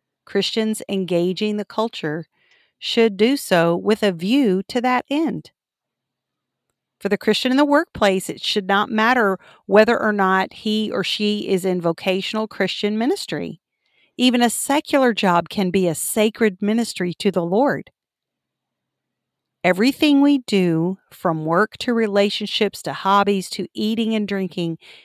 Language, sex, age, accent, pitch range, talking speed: English, female, 50-69, American, 180-220 Hz, 140 wpm